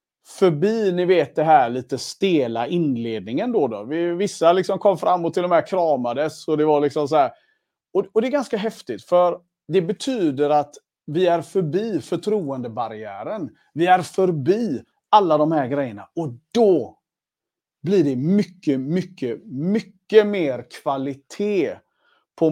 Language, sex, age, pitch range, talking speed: Swedish, male, 40-59, 150-205 Hz, 150 wpm